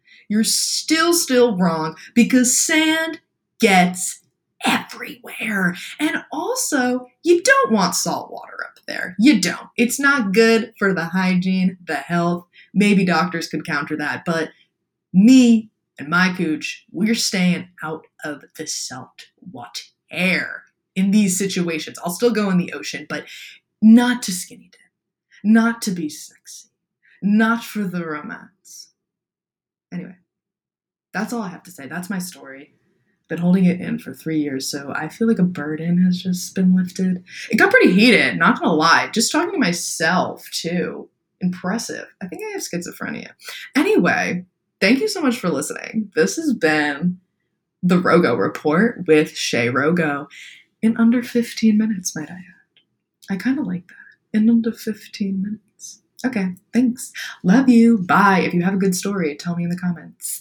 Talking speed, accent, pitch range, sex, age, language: 160 wpm, American, 175-230 Hz, female, 20-39, English